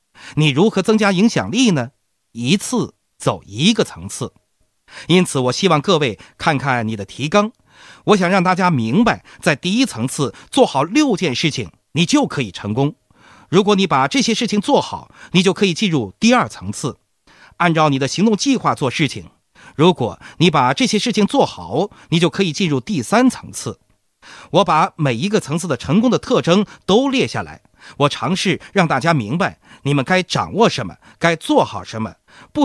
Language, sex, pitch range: Chinese, male, 135-200 Hz